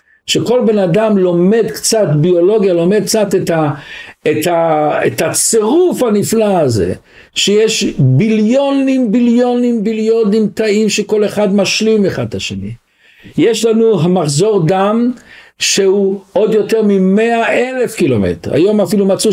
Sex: male